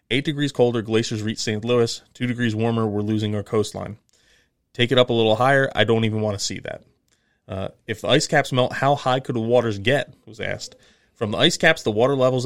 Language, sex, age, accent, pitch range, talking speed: English, male, 30-49, American, 105-125 Hz, 230 wpm